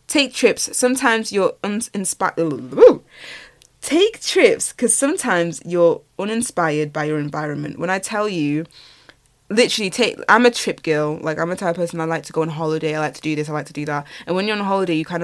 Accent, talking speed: British, 210 wpm